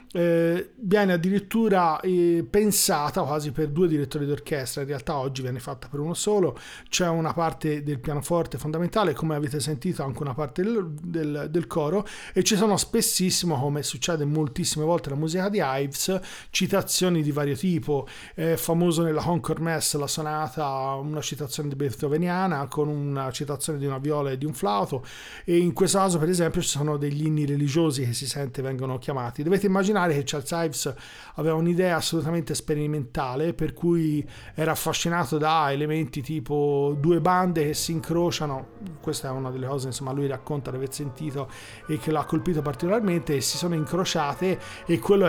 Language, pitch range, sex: Italian, 145-175 Hz, male